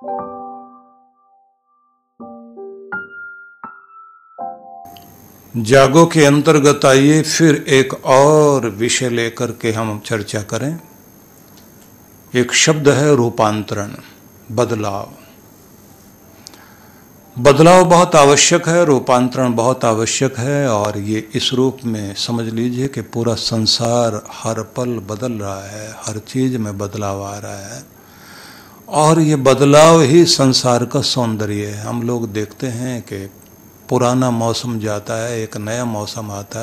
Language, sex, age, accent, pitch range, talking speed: Hindi, male, 60-79, native, 110-140 Hz, 115 wpm